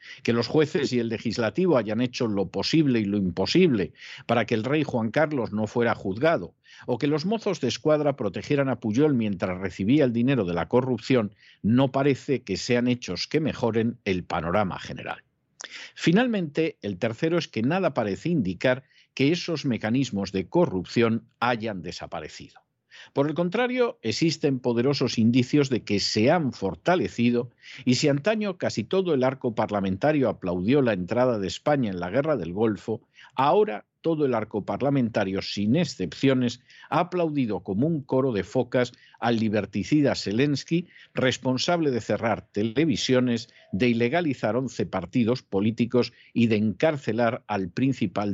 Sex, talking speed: male, 155 wpm